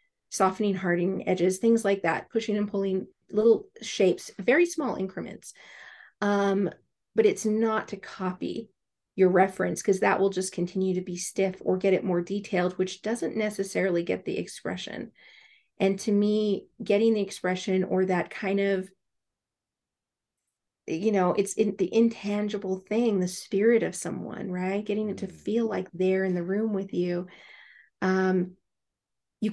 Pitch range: 185-215 Hz